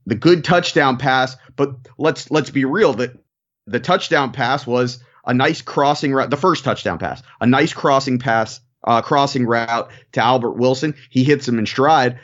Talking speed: 180 wpm